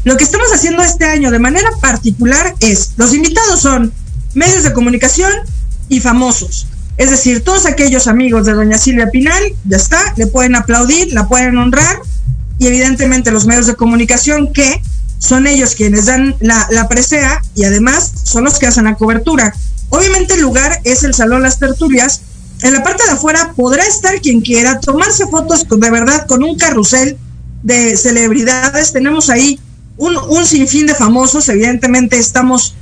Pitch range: 235-280 Hz